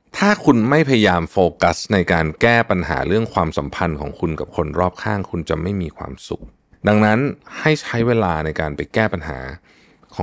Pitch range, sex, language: 85-120 Hz, male, Thai